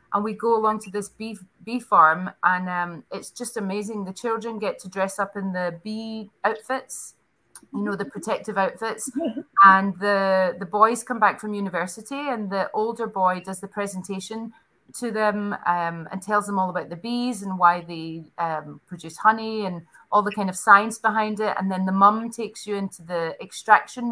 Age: 30-49